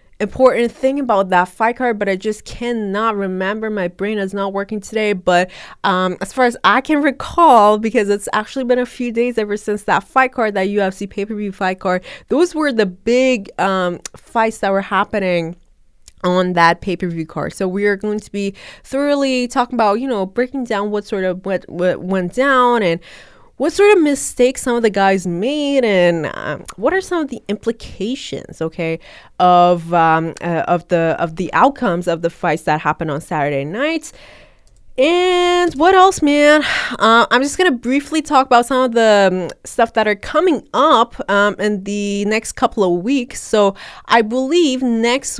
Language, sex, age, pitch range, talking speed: English, female, 20-39, 185-250 Hz, 185 wpm